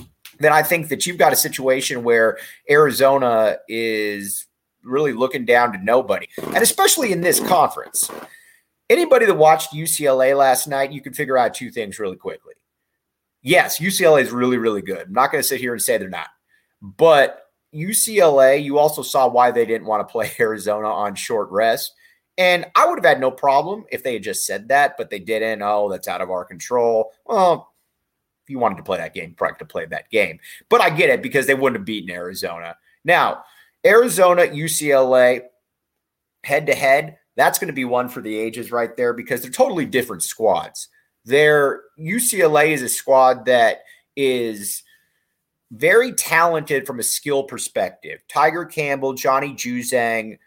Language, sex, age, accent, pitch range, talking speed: English, male, 30-49, American, 120-165 Hz, 175 wpm